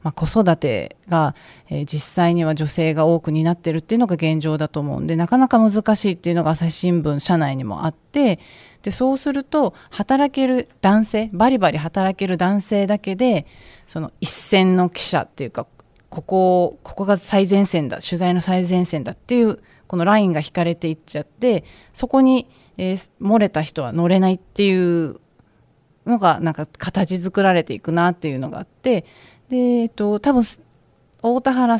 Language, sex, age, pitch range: Japanese, female, 40-59, 165-215 Hz